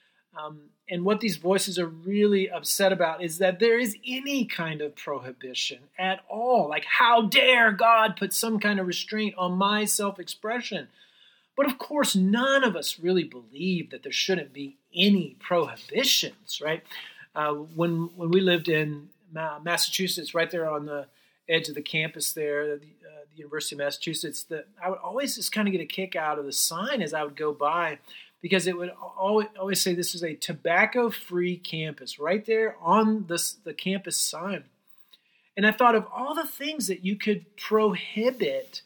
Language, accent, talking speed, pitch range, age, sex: English, American, 175 wpm, 165-210 Hz, 30-49, male